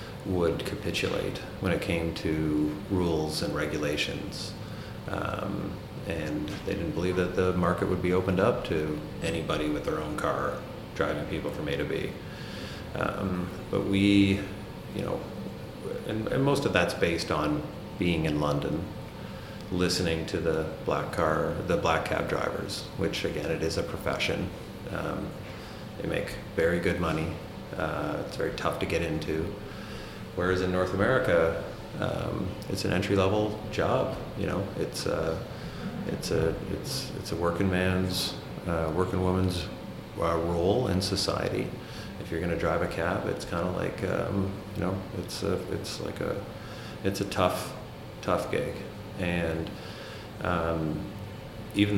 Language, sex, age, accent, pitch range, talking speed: English, male, 30-49, American, 85-100 Hz, 150 wpm